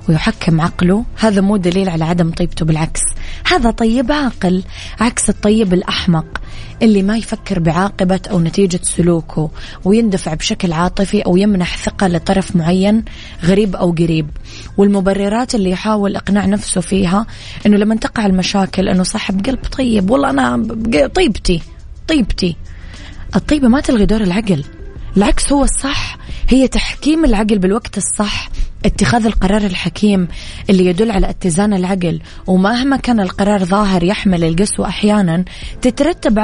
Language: Arabic